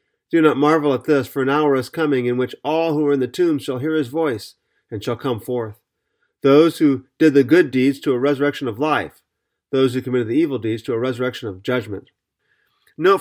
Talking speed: 225 wpm